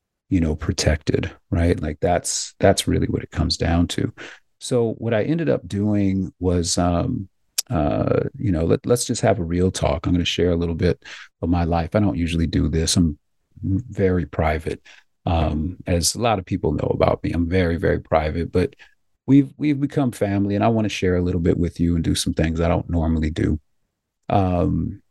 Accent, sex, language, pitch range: American, male, English, 85-110 Hz